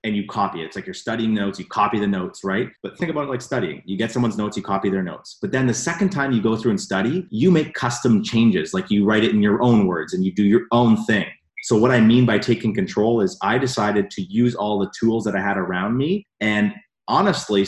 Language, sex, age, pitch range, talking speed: English, male, 30-49, 100-125 Hz, 265 wpm